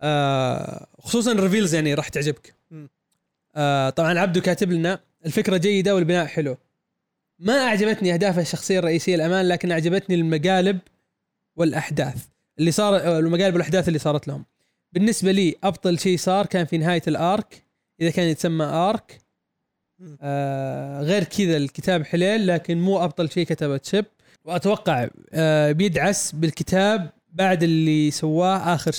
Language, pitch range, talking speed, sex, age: Arabic, 155-190 Hz, 135 wpm, male, 20-39